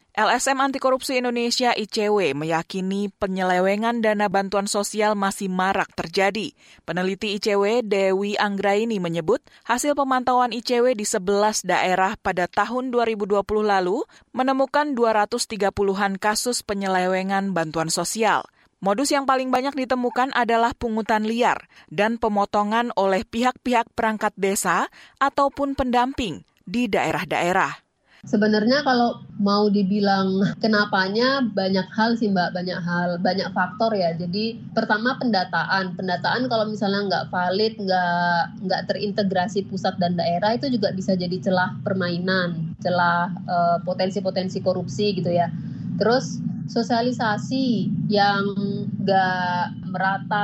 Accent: native